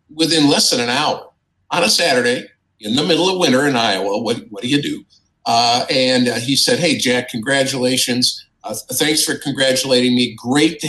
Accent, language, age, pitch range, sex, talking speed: American, English, 50-69, 120-155 Hz, male, 195 wpm